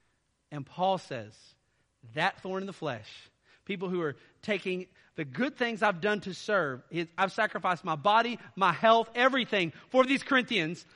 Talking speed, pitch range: 160 wpm, 160-225 Hz